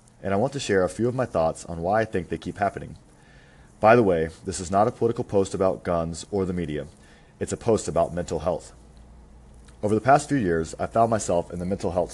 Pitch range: 75-100 Hz